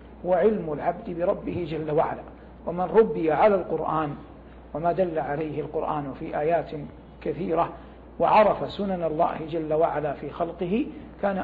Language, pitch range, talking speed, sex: English, 155-190 Hz, 125 wpm, male